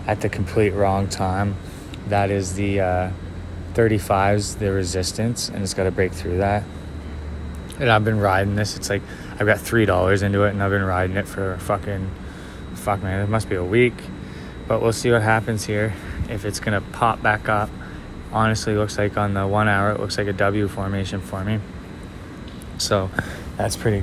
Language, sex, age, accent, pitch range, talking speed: English, male, 20-39, American, 95-110 Hz, 190 wpm